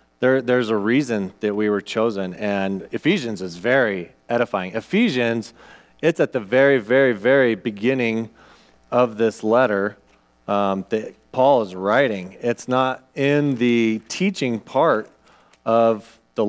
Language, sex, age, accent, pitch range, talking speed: English, male, 30-49, American, 105-140 Hz, 130 wpm